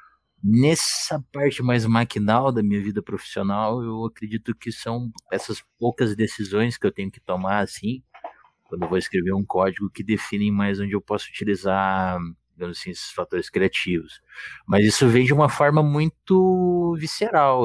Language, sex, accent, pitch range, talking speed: Portuguese, male, Brazilian, 95-125 Hz, 150 wpm